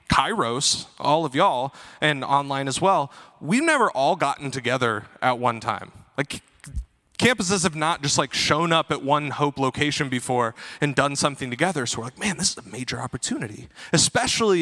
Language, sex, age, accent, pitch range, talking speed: English, male, 30-49, American, 130-190 Hz, 175 wpm